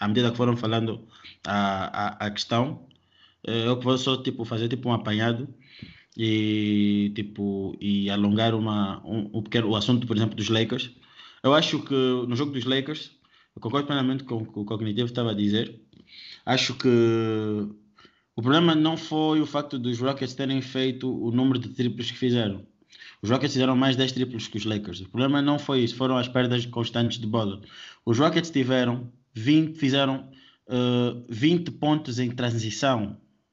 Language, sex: Portuguese, male